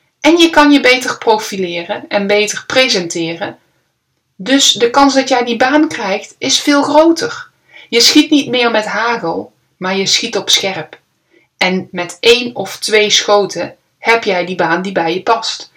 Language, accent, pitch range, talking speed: Dutch, Dutch, 185-250 Hz, 170 wpm